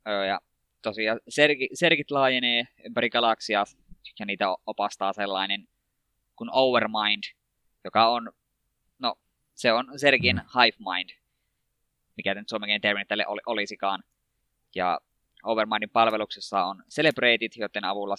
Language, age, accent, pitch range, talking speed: Finnish, 20-39, native, 100-120 Hz, 110 wpm